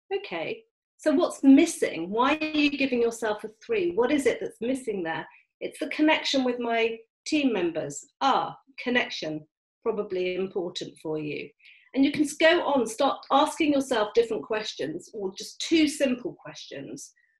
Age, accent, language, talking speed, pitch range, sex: 40-59, British, English, 155 wpm, 210-305 Hz, female